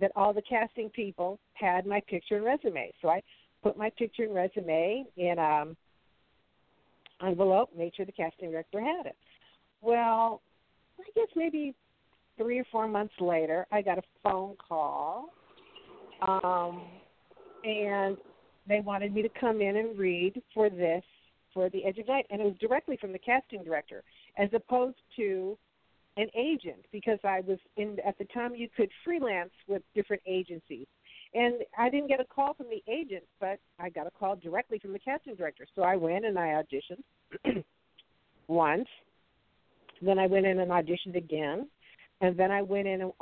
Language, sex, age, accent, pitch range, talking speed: English, female, 50-69, American, 185-225 Hz, 170 wpm